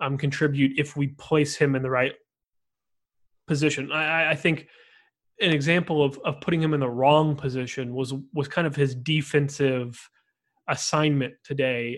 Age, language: 20-39, English